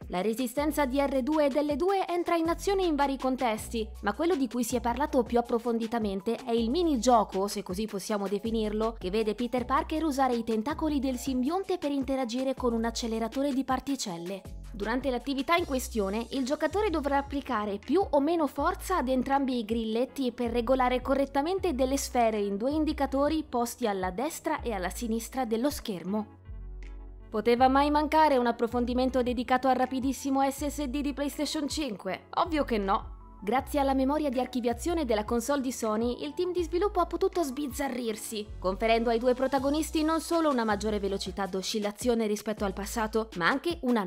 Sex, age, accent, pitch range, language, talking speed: female, 20-39, native, 225-295 Hz, Italian, 170 wpm